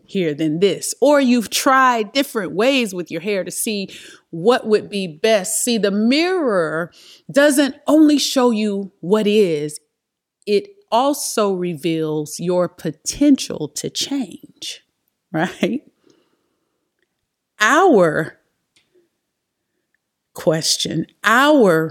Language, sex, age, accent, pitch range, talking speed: English, female, 30-49, American, 160-240 Hz, 100 wpm